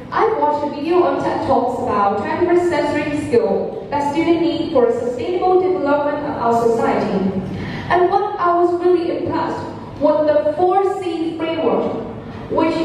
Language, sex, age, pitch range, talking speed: English, female, 10-29, 255-350 Hz, 155 wpm